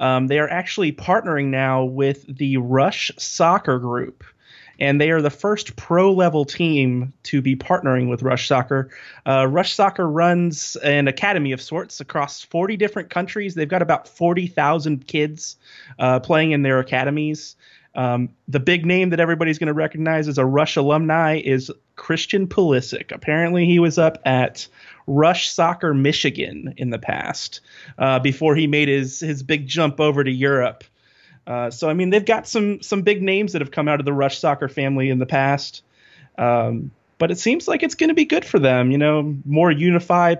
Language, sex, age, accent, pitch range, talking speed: English, male, 30-49, American, 135-165 Hz, 180 wpm